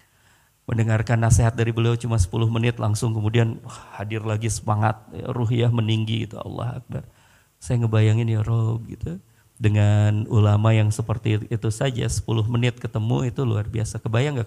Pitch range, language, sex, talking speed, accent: 110-150 Hz, Indonesian, male, 155 wpm, native